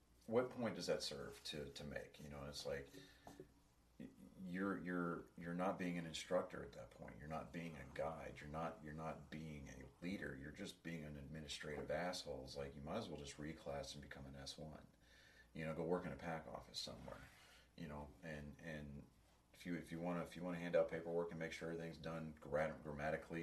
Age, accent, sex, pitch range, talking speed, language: 40-59, American, male, 70-80 Hz, 215 wpm, English